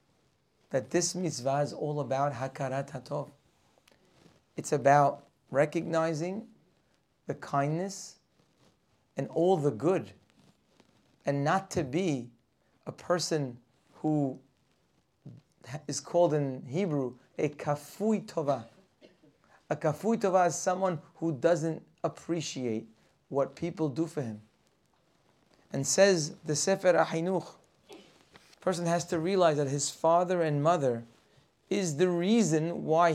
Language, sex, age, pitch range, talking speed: English, male, 30-49, 145-180 Hz, 110 wpm